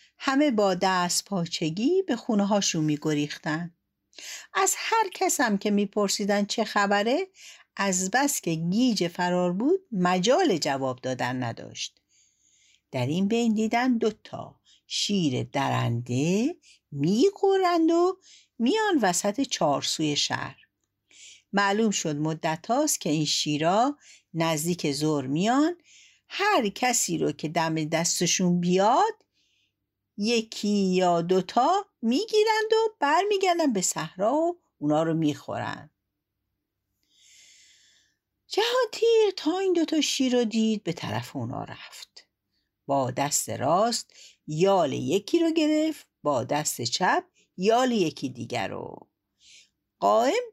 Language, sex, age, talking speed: Persian, female, 60-79, 115 wpm